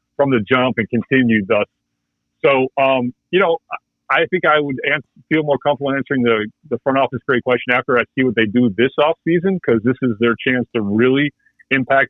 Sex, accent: male, American